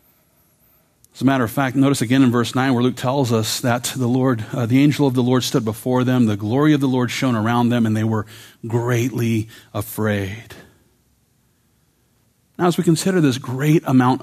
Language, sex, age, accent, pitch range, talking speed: English, male, 40-59, American, 115-135 Hz, 195 wpm